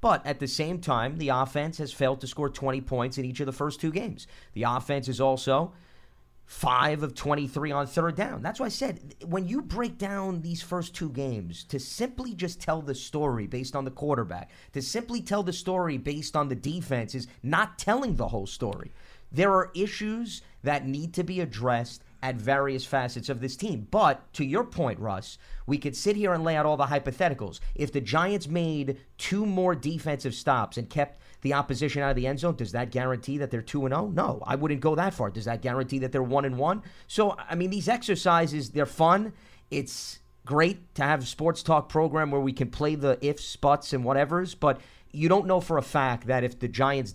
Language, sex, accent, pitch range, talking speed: English, male, American, 130-170 Hz, 215 wpm